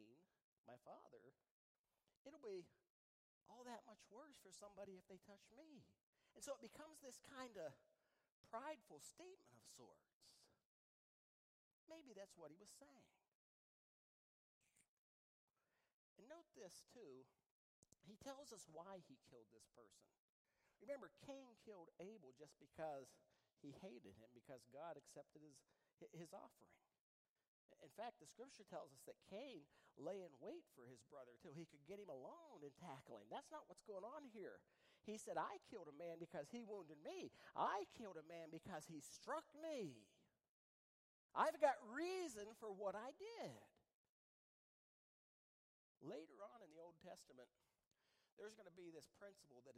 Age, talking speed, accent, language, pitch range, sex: 40-59, 150 wpm, American, English, 145-240 Hz, male